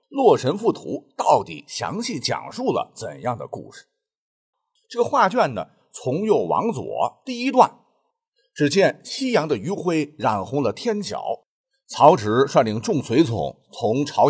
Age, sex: 50-69, male